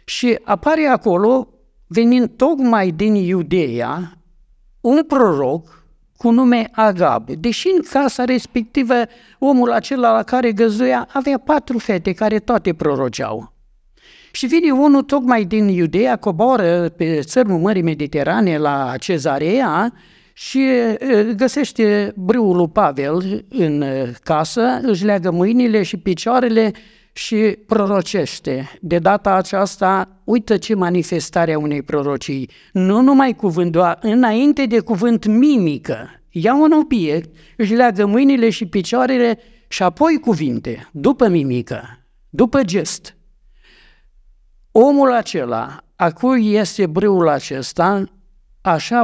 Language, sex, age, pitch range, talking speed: Romanian, male, 60-79, 165-240 Hz, 115 wpm